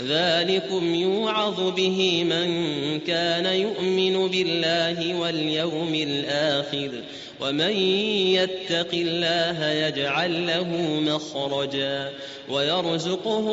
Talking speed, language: 70 wpm, Arabic